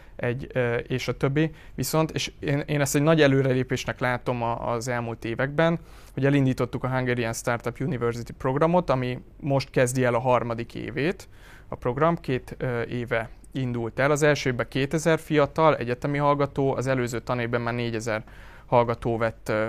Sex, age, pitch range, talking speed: male, 30-49, 120-140 Hz, 150 wpm